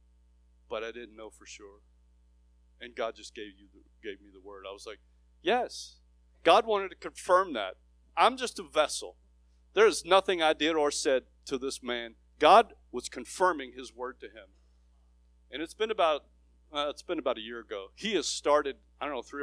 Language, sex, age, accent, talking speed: English, male, 40-59, American, 195 wpm